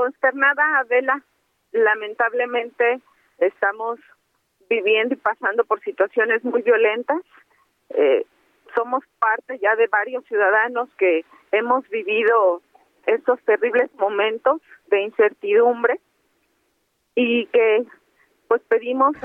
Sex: female